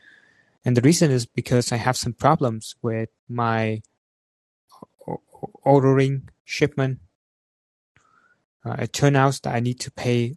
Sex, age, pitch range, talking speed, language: male, 20-39, 110-135 Hz, 125 wpm, English